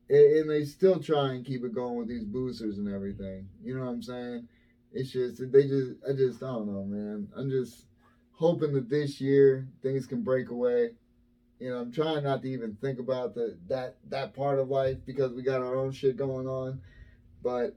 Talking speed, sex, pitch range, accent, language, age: 210 wpm, male, 120-140 Hz, American, English, 30-49